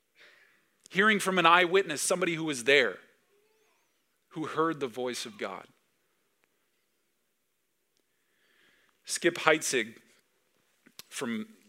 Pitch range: 140-190 Hz